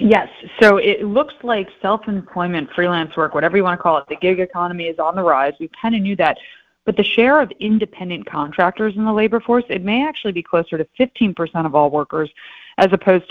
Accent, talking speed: American, 215 wpm